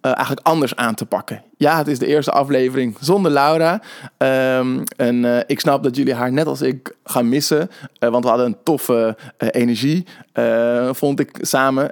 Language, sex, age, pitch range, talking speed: Dutch, male, 20-39, 120-145 Hz, 195 wpm